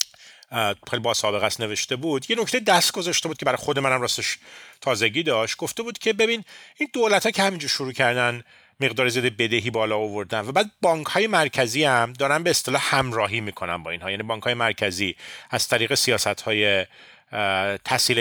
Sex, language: male, Persian